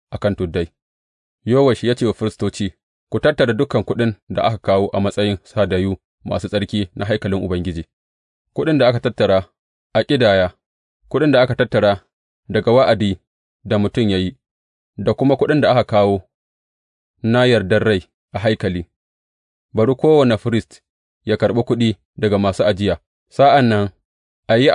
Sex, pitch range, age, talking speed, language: male, 90-120 Hz, 30-49, 130 wpm, English